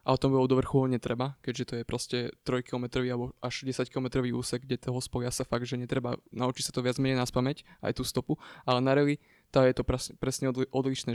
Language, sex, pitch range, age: Slovak, male, 120-130 Hz, 20-39